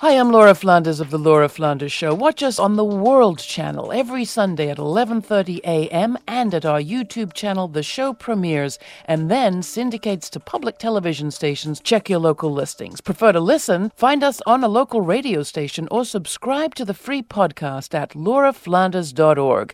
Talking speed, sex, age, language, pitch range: 175 wpm, female, 50-69, English, 150-215 Hz